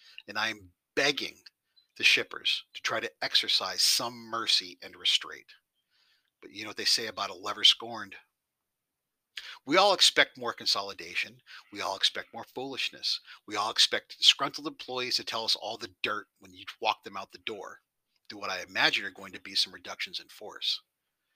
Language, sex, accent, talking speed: English, male, American, 175 wpm